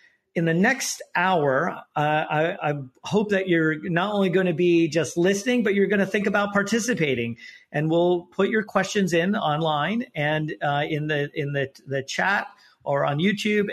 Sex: male